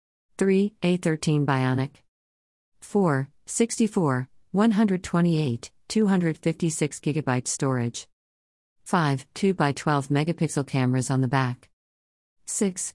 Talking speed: 80 wpm